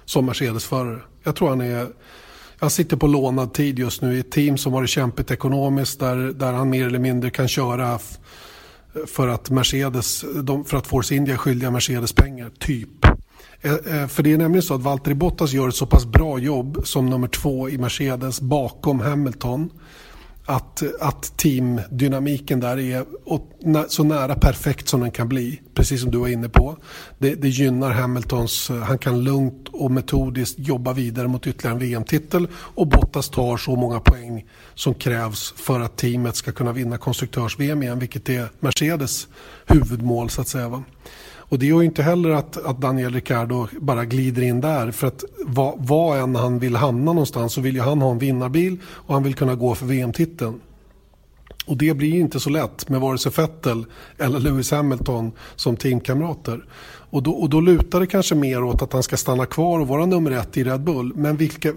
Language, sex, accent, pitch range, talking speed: Swedish, male, native, 125-150 Hz, 185 wpm